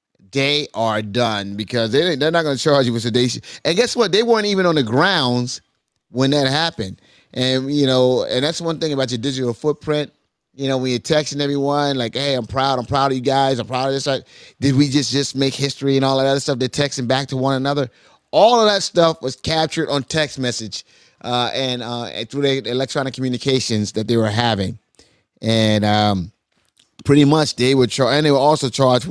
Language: English